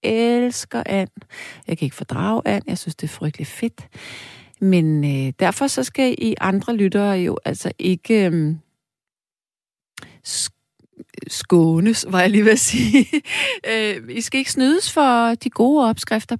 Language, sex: Danish, female